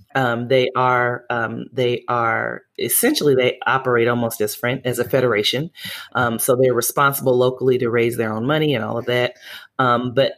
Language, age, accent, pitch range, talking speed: English, 30-49, American, 115-135 Hz, 175 wpm